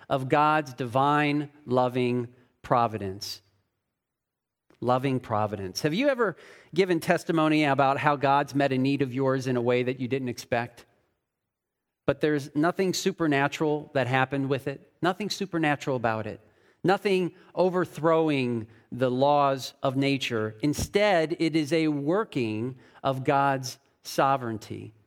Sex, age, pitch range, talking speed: male, 40-59, 130-170 Hz, 125 wpm